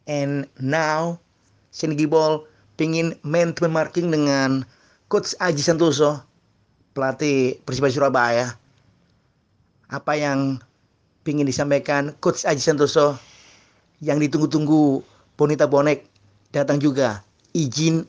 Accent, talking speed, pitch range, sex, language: native, 95 wpm, 115-155 Hz, male, Indonesian